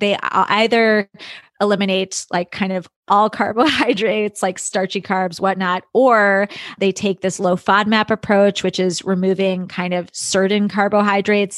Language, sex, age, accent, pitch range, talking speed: English, female, 20-39, American, 185-210 Hz, 135 wpm